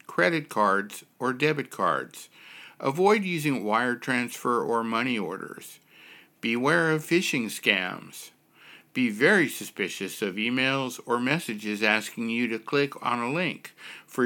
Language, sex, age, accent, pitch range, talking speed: English, male, 60-79, American, 105-155 Hz, 130 wpm